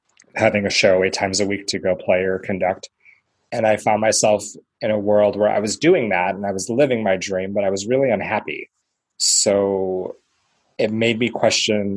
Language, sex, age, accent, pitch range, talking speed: English, male, 20-39, American, 100-120 Hz, 200 wpm